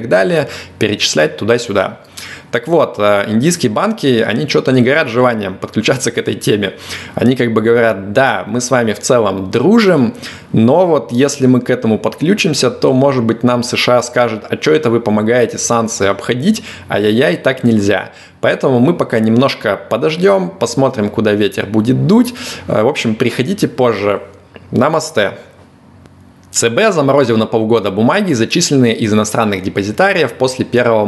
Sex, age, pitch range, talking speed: male, 20-39, 105-130 Hz, 155 wpm